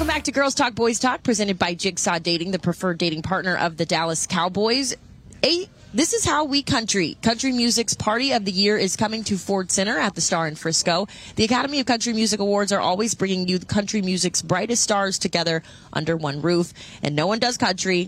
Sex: female